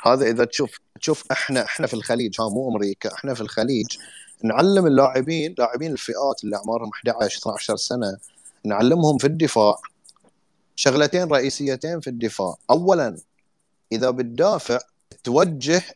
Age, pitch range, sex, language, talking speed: 30-49, 120-165 Hz, male, Arabic, 130 wpm